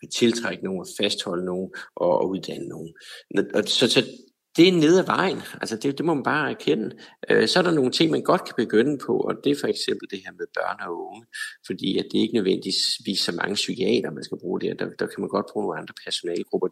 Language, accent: Danish, native